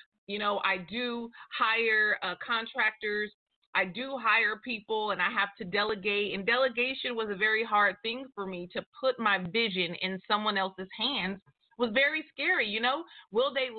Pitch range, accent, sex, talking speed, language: 195-245 Hz, American, female, 175 wpm, English